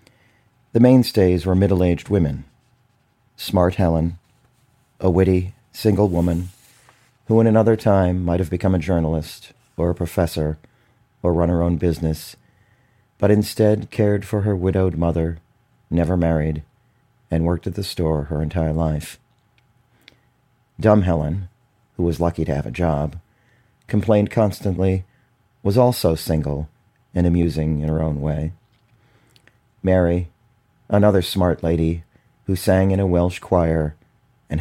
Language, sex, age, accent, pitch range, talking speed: English, male, 40-59, American, 85-120 Hz, 135 wpm